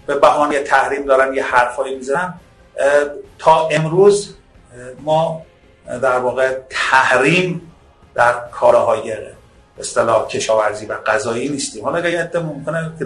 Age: 50-69